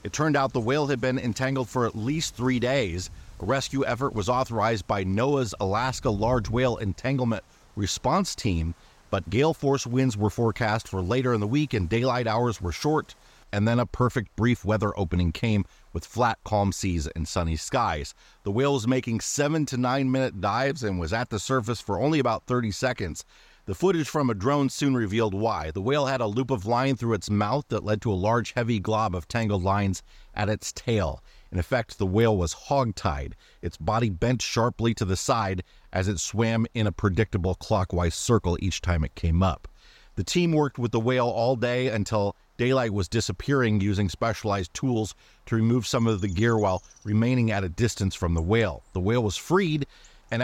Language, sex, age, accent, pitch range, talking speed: English, male, 40-59, American, 100-130 Hz, 200 wpm